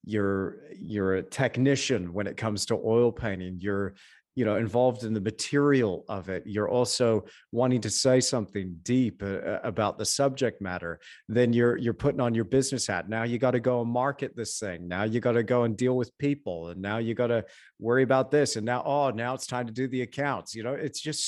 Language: English